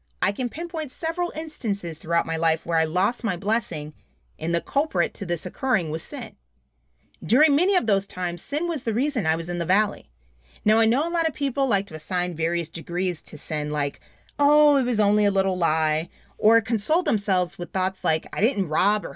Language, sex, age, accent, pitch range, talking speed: English, female, 30-49, American, 160-235 Hz, 210 wpm